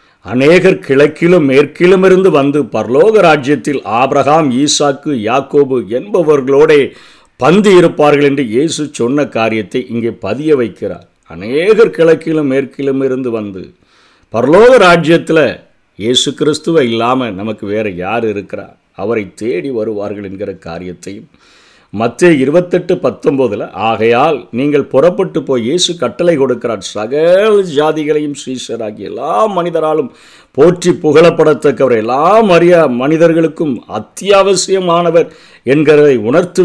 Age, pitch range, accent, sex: 50-69, 115-165 Hz, native, male